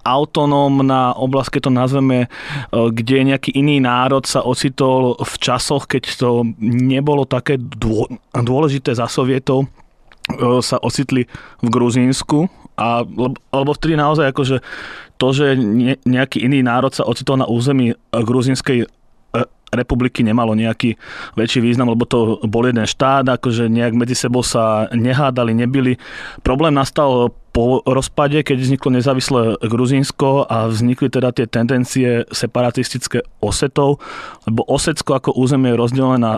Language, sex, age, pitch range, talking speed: Slovak, male, 20-39, 120-135 Hz, 125 wpm